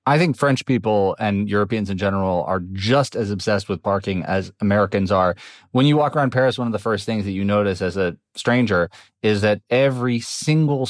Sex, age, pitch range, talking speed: male, 30-49, 100-130 Hz, 205 wpm